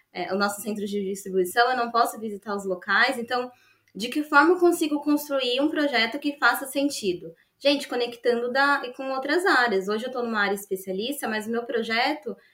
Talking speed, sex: 195 wpm, female